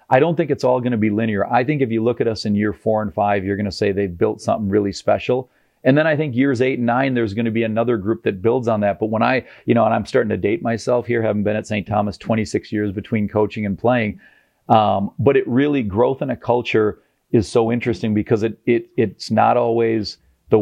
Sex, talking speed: male, 260 wpm